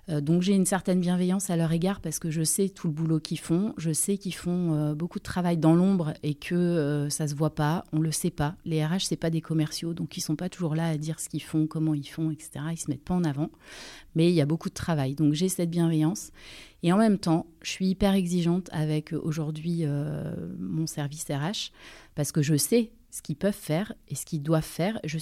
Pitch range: 155-175 Hz